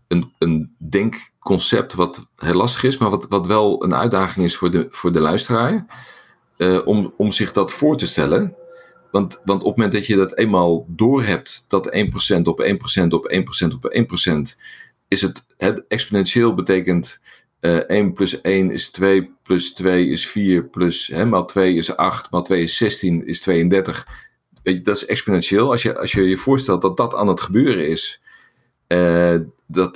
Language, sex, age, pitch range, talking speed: Dutch, male, 50-69, 85-95 Hz, 170 wpm